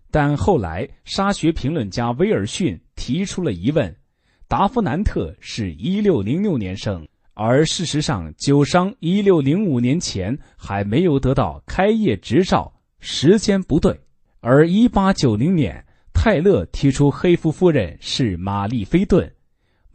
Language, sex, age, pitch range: Chinese, male, 30-49, 110-170 Hz